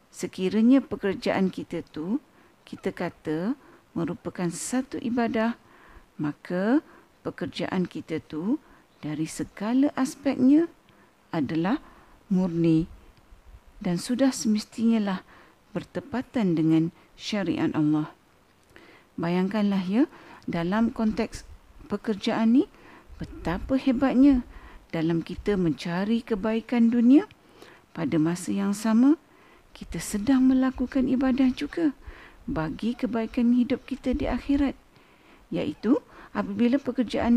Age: 50-69